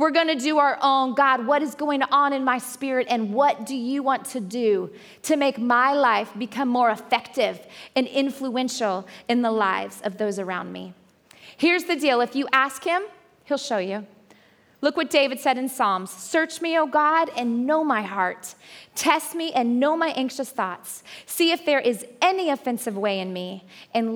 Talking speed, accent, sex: 190 wpm, American, female